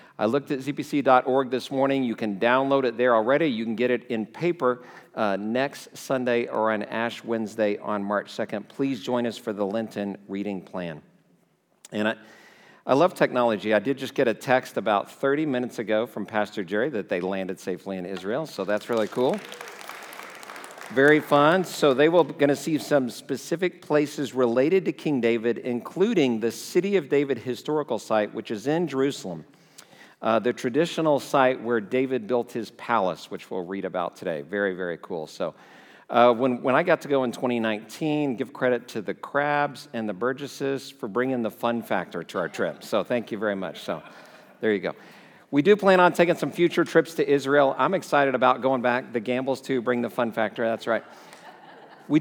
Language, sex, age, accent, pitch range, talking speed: English, male, 50-69, American, 110-145 Hz, 195 wpm